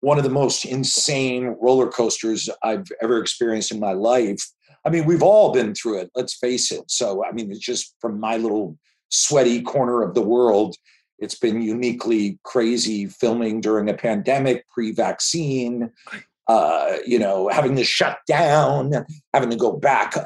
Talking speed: 170 wpm